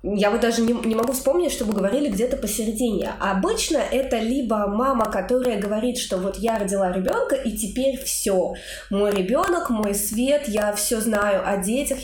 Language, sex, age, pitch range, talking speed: Russian, female, 20-39, 195-250 Hz, 175 wpm